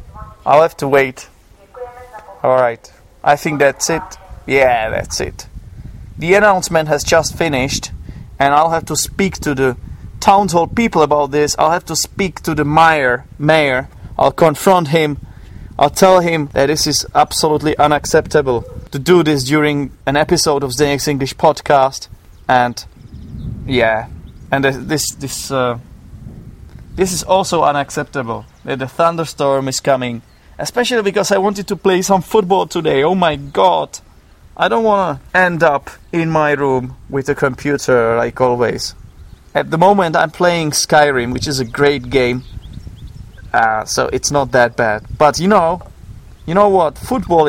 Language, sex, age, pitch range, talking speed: English, male, 30-49, 130-170 Hz, 155 wpm